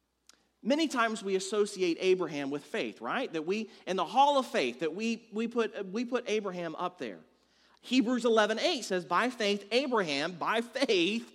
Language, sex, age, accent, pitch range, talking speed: English, male, 40-59, American, 190-255 Hz, 170 wpm